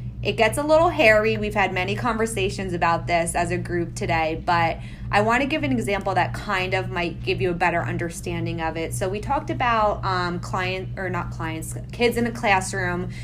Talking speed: 210 wpm